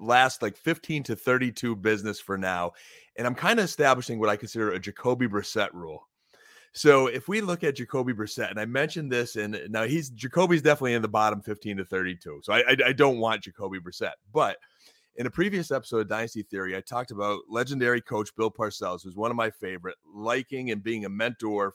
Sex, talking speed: male, 205 wpm